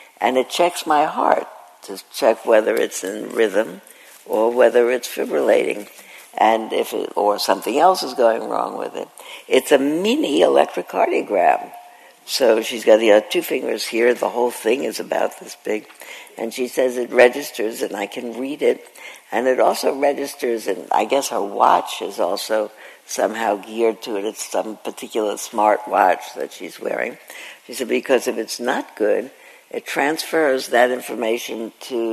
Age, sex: 60-79, female